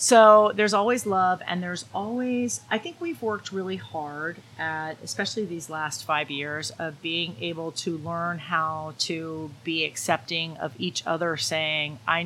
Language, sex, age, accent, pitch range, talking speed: English, female, 30-49, American, 145-180 Hz, 160 wpm